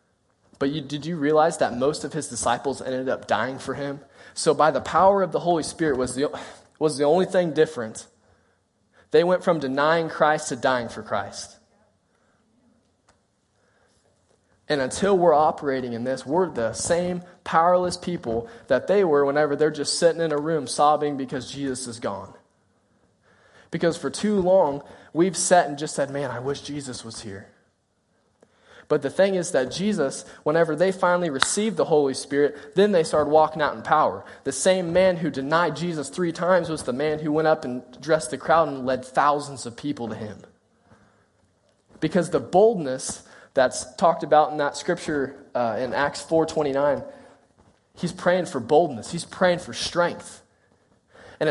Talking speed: 170 wpm